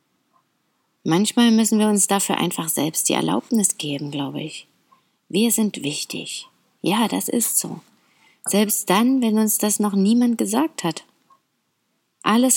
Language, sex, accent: German, female, German